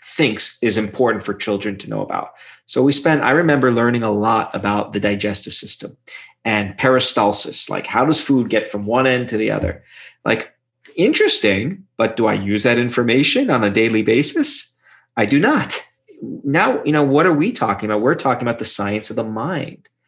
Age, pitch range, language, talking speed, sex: 30-49, 105-125 Hz, English, 190 wpm, male